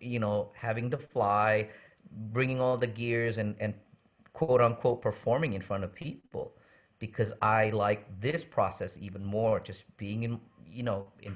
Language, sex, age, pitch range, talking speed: English, male, 50-69, 100-120 Hz, 165 wpm